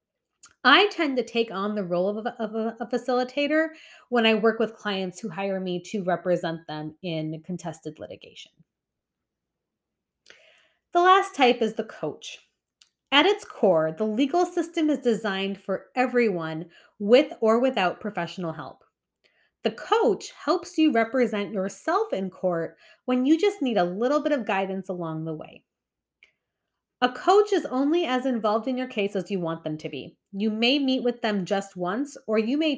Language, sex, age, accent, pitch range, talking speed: English, female, 30-49, American, 185-260 Hz, 165 wpm